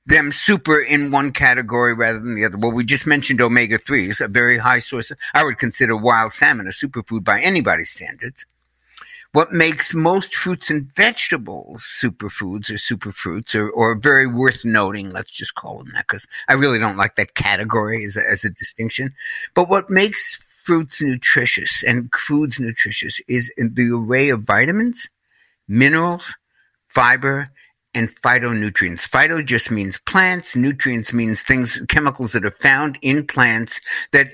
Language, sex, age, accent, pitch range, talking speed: English, male, 60-79, American, 120-150 Hz, 155 wpm